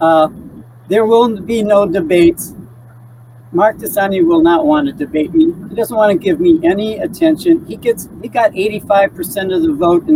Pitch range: 165-235 Hz